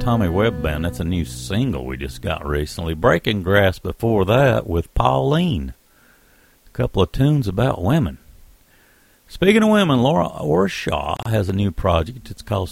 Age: 60-79